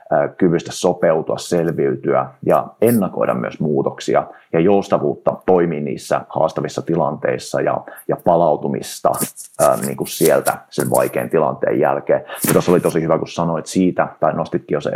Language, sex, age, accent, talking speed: Finnish, male, 30-49, native, 130 wpm